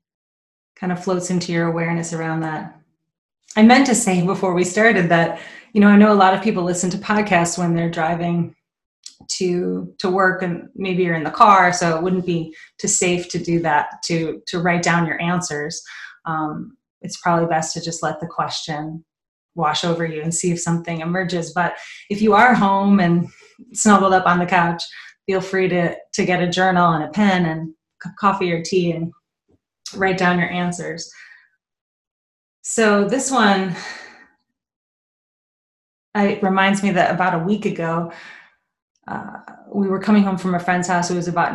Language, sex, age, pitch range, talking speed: English, female, 20-39, 165-190 Hz, 180 wpm